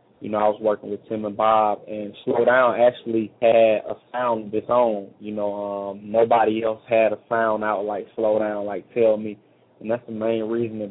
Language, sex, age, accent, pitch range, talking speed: English, male, 20-39, American, 105-115 Hz, 220 wpm